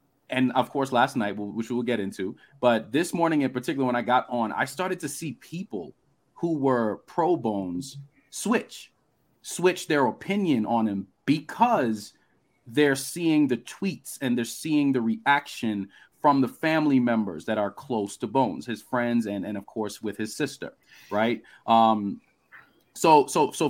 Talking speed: 165 wpm